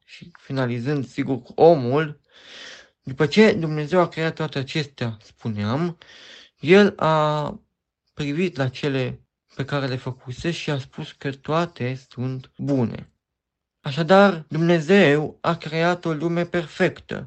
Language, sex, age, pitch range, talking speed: Romanian, male, 50-69, 130-165 Hz, 120 wpm